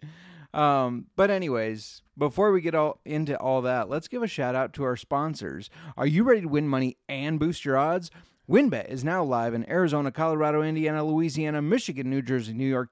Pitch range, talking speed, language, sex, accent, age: 135-180 Hz, 190 wpm, English, male, American, 30-49